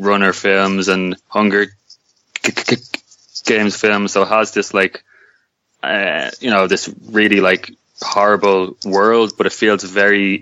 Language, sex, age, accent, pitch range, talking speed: English, male, 20-39, Irish, 95-105 Hz, 130 wpm